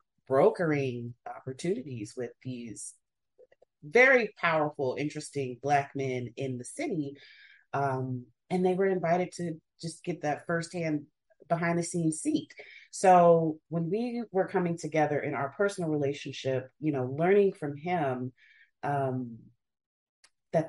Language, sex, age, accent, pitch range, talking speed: English, female, 30-49, American, 130-165 Hz, 125 wpm